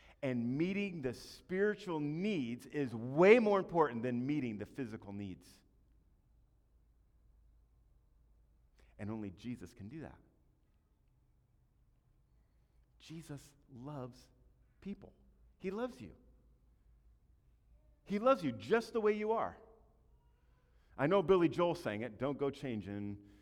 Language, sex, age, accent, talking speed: English, male, 50-69, American, 110 wpm